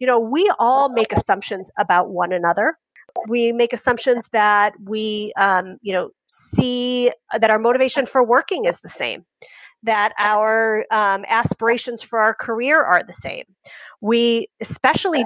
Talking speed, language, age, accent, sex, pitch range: 150 wpm, English, 30-49, American, female, 205-260 Hz